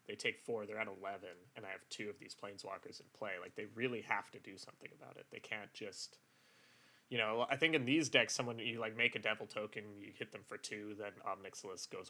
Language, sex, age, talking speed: English, male, 20-39, 245 wpm